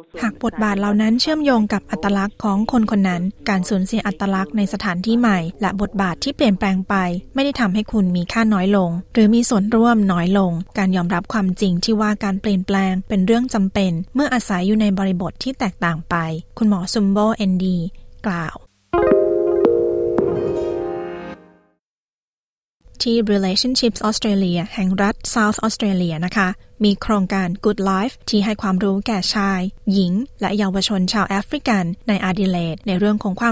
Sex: female